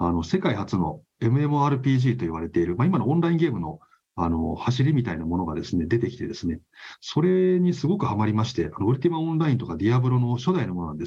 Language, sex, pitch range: Japanese, male, 105-145 Hz